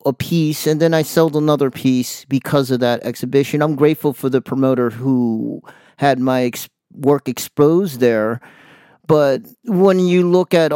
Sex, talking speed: male, 155 wpm